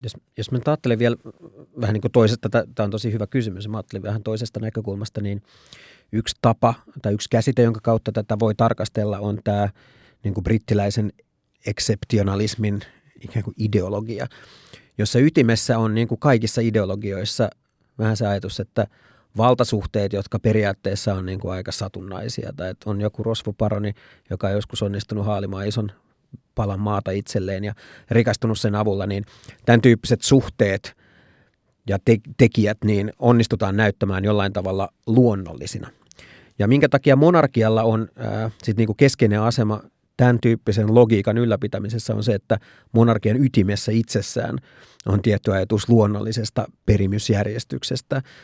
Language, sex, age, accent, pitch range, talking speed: Finnish, male, 30-49, native, 105-120 Hz, 135 wpm